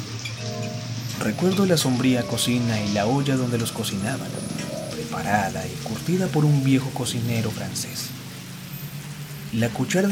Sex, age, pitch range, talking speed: male, 40-59, 110-145 Hz, 120 wpm